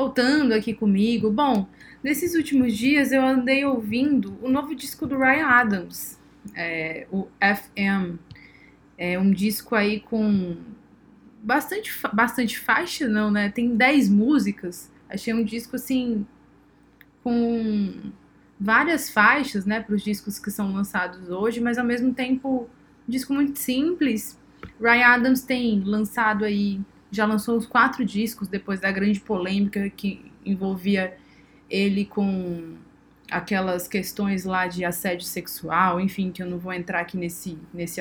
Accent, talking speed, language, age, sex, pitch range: Brazilian, 140 wpm, Portuguese, 20-39, female, 195-255 Hz